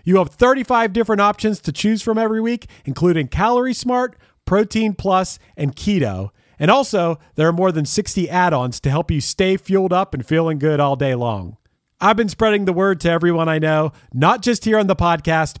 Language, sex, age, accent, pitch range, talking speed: English, male, 40-59, American, 135-200 Hz, 200 wpm